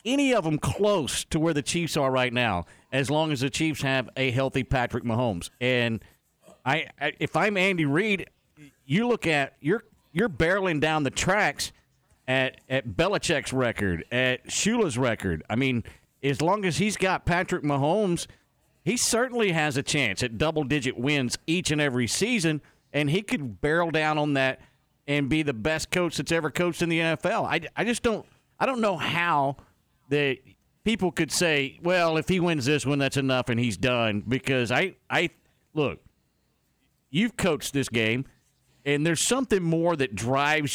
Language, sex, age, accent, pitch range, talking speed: English, male, 50-69, American, 125-165 Hz, 180 wpm